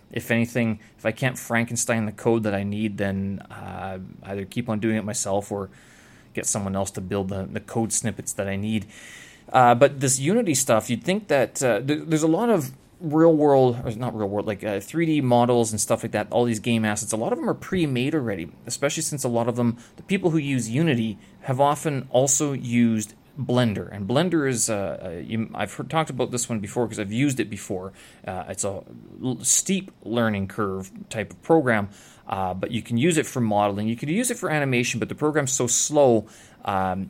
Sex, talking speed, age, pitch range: male, 215 wpm, 20-39, 105-130 Hz